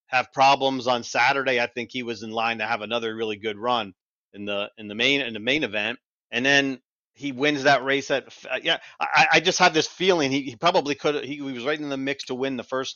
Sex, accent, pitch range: male, American, 115-135 Hz